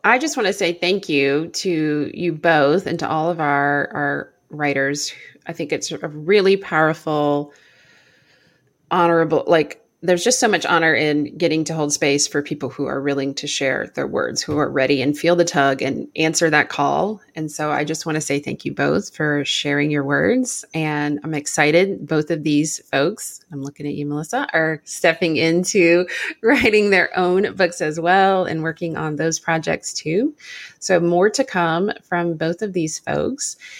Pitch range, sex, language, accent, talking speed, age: 150-180 Hz, female, English, American, 185 wpm, 30-49